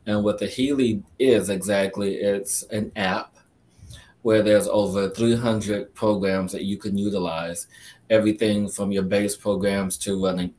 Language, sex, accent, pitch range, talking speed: English, male, American, 95-105 Hz, 145 wpm